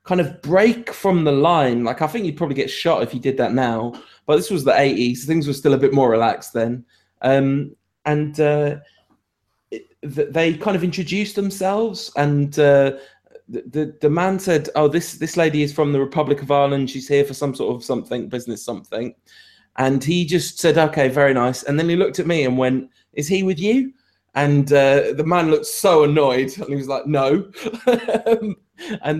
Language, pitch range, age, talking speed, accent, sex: English, 130-180 Hz, 20-39, 205 wpm, British, male